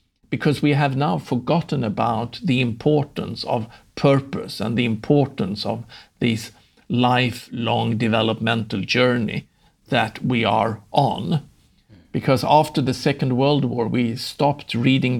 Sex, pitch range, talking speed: male, 115-135 Hz, 120 wpm